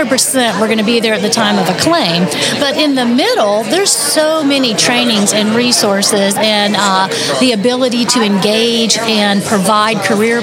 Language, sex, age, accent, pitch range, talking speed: English, female, 40-59, American, 215-255 Hz, 180 wpm